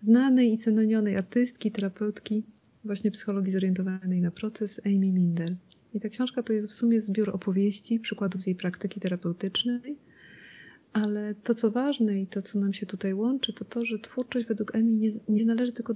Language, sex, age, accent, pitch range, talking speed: Polish, female, 30-49, native, 200-230 Hz, 175 wpm